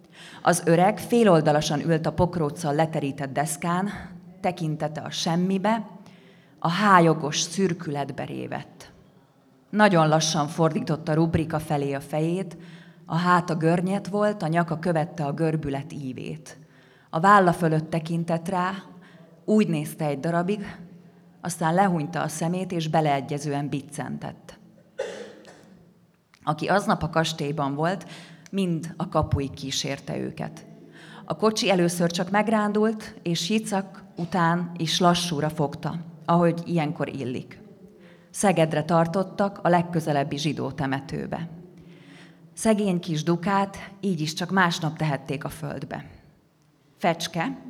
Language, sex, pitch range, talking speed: Hungarian, female, 155-185 Hz, 115 wpm